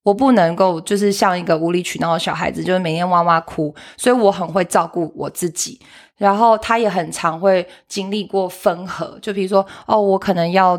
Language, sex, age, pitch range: Chinese, female, 20-39, 175-215 Hz